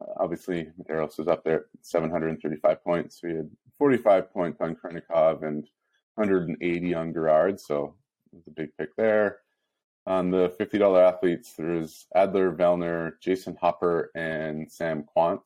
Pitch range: 80-95 Hz